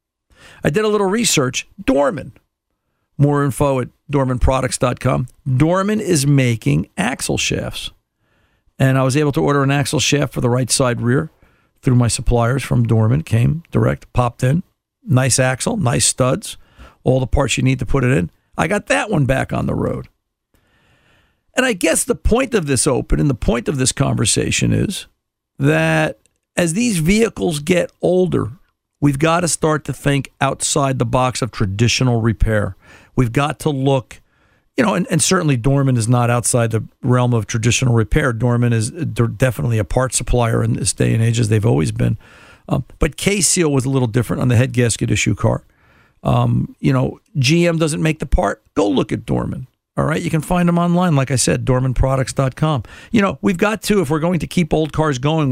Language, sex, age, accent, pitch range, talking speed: English, male, 50-69, American, 120-160 Hz, 190 wpm